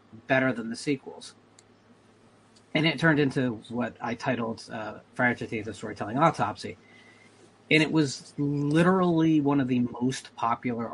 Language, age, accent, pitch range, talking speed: English, 30-49, American, 115-145 Hz, 145 wpm